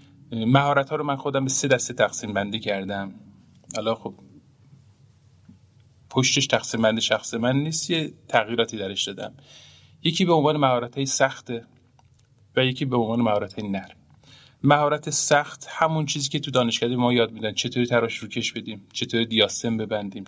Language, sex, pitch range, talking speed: Persian, male, 110-140 Hz, 155 wpm